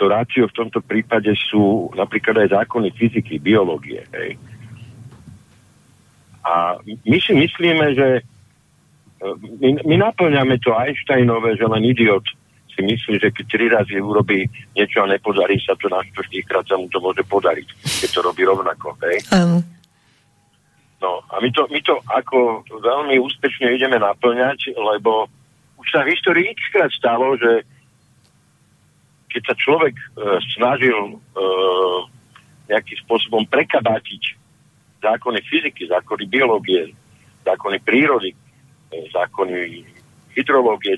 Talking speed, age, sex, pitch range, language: 120 wpm, 50-69, male, 110-145 Hz, Slovak